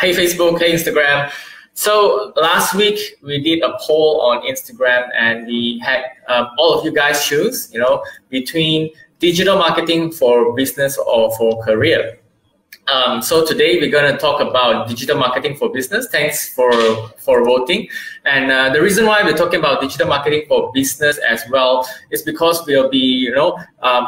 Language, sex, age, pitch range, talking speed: English, male, 20-39, 125-210 Hz, 170 wpm